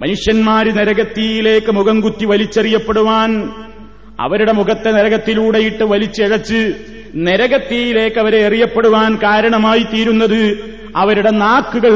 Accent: native